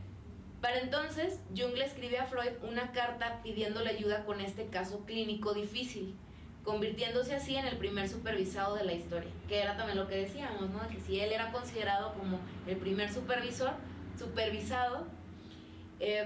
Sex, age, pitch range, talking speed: female, 20-39, 195-245 Hz, 160 wpm